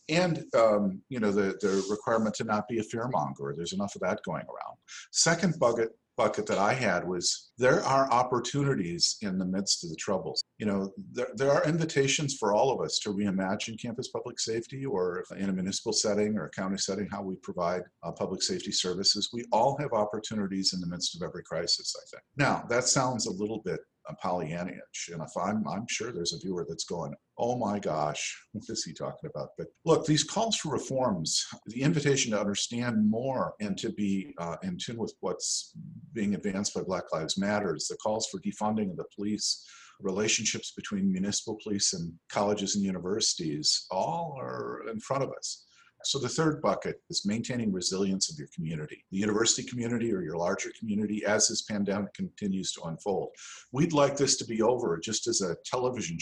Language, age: English, 50-69